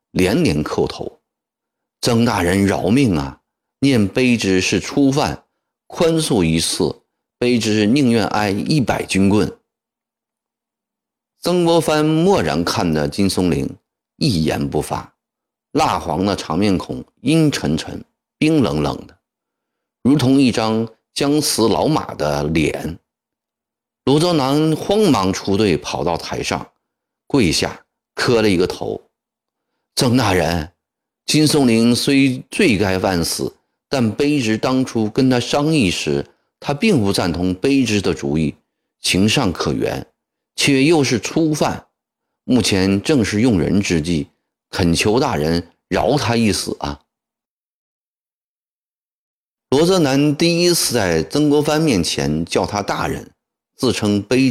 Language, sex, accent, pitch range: Chinese, male, native, 90-150 Hz